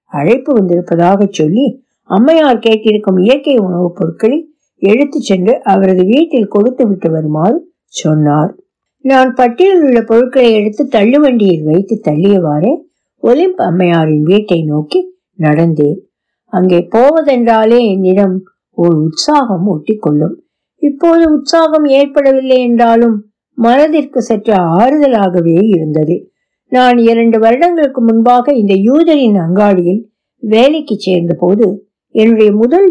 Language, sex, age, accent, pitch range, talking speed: Tamil, female, 60-79, native, 190-275 Hz, 95 wpm